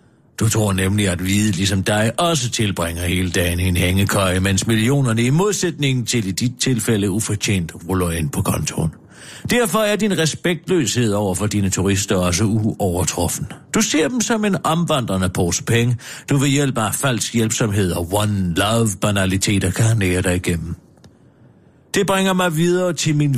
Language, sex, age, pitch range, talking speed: Danish, male, 60-79, 95-140 Hz, 165 wpm